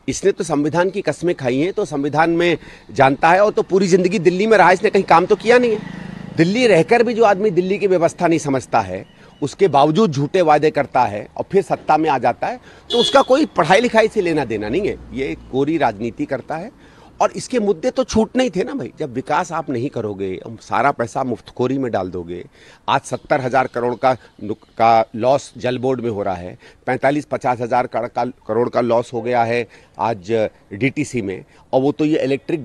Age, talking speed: 40-59, 215 wpm